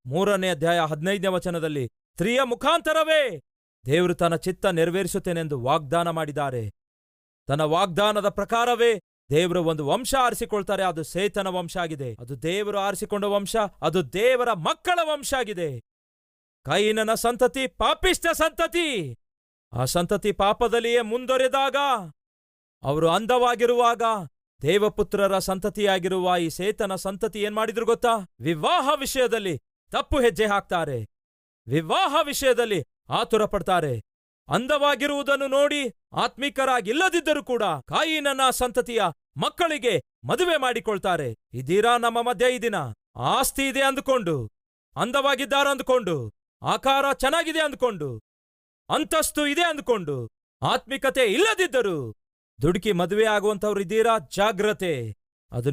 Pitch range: 165-260 Hz